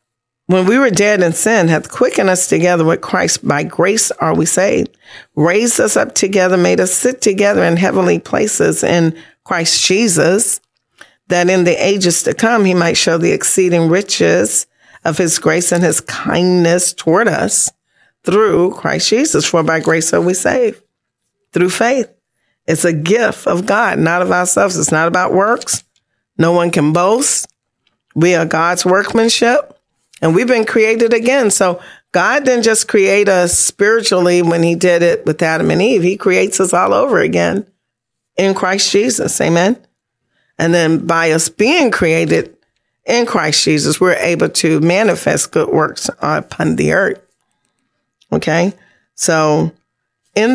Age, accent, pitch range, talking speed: 40-59, American, 165-205 Hz, 160 wpm